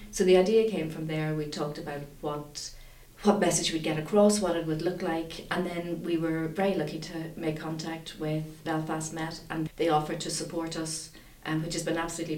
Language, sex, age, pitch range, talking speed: English, female, 40-59, 150-165 Hz, 215 wpm